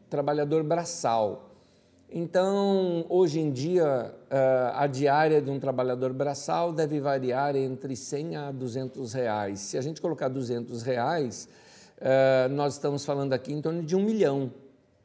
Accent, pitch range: Brazilian, 120-155 Hz